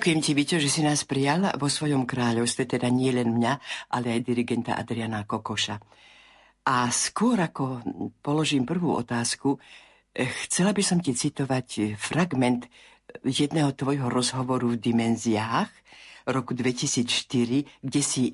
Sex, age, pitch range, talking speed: female, 50-69, 120-155 Hz, 130 wpm